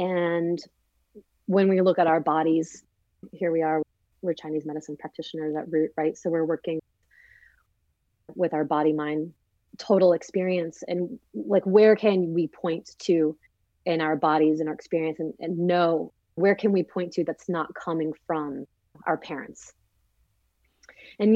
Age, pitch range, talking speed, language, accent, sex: 30-49, 155-185 Hz, 150 wpm, English, American, female